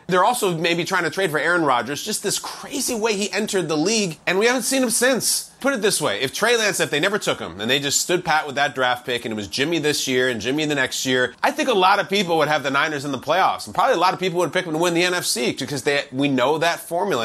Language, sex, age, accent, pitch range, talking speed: English, male, 30-49, American, 145-195 Hz, 305 wpm